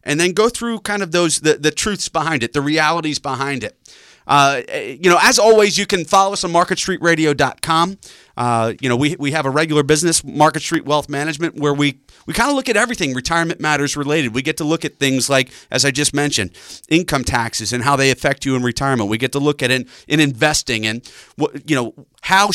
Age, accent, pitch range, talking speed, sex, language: 30-49, American, 125-155 Hz, 225 wpm, male, English